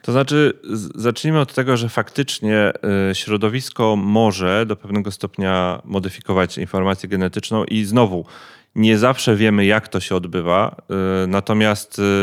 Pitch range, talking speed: 95-110 Hz, 125 wpm